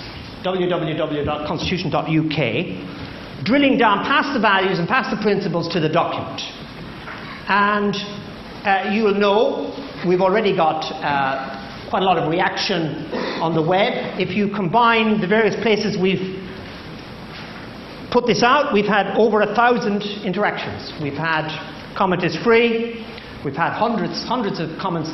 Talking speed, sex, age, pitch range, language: 135 wpm, male, 50-69, 170-225 Hz, English